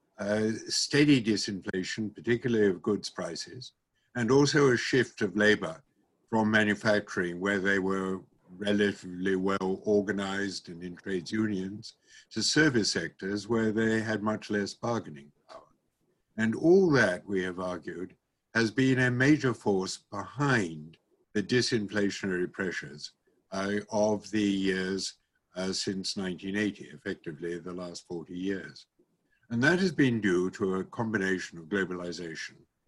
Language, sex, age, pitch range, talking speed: English, male, 60-79, 95-115 Hz, 130 wpm